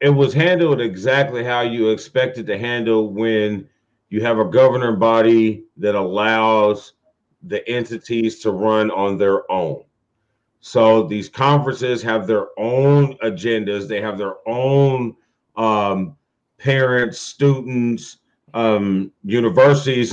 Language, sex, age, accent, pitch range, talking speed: English, male, 40-59, American, 110-135 Hz, 120 wpm